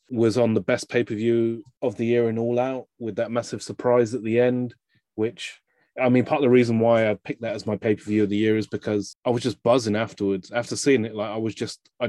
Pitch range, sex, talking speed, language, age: 105-130 Hz, male, 250 wpm, English, 20-39